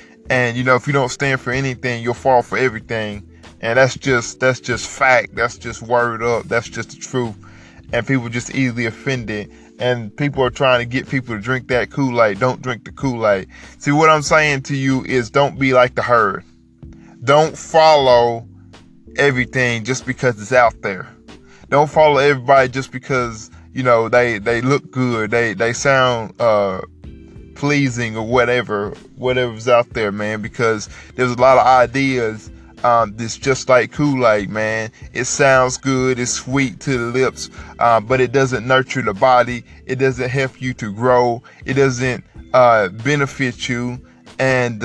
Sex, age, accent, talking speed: male, 20-39, American, 170 wpm